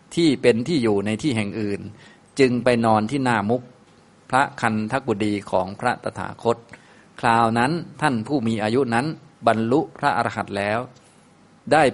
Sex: male